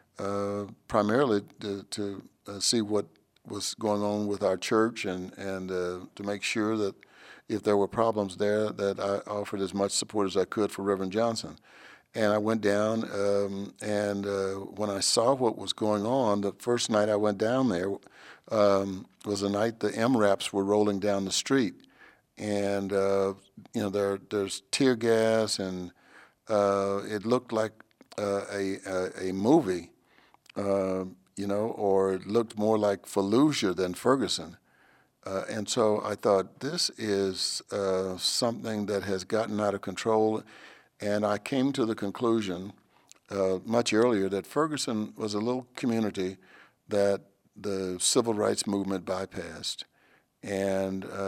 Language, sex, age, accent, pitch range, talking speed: English, male, 60-79, American, 100-110 Hz, 155 wpm